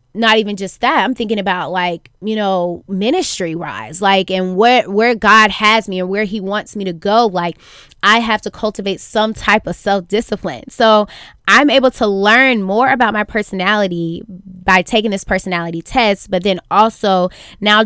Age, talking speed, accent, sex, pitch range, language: 20-39, 180 wpm, American, female, 185-225 Hz, English